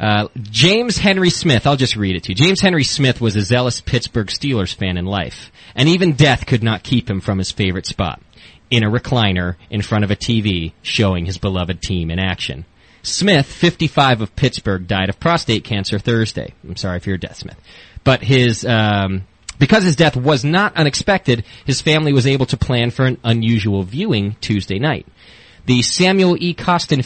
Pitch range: 105-140 Hz